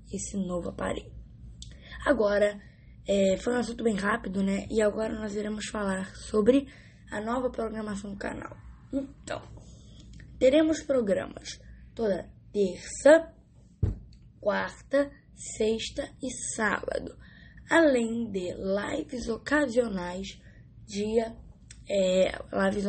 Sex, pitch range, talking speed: female, 195-240 Hz, 95 wpm